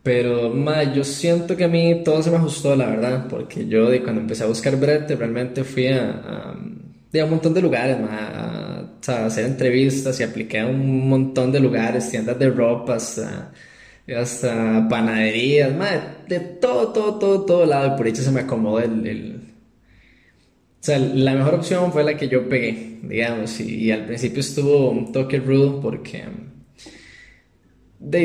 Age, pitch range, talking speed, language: 10-29, 120-160 Hz, 180 wpm, Spanish